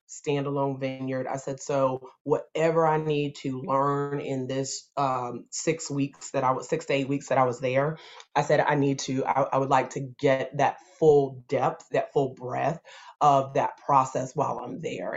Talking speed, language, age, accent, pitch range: 195 wpm, English, 30-49, American, 135-145 Hz